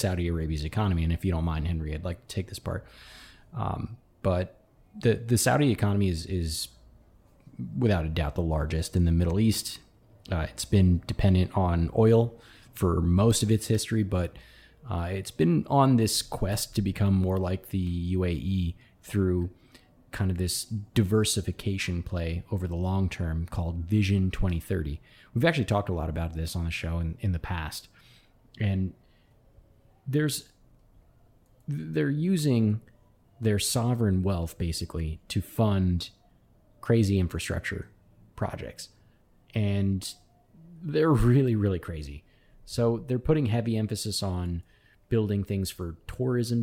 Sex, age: male, 20-39